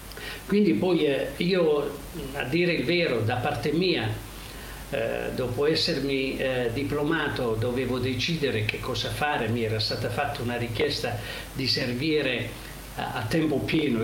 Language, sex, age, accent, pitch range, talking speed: Italian, male, 50-69, native, 110-140 Hz, 140 wpm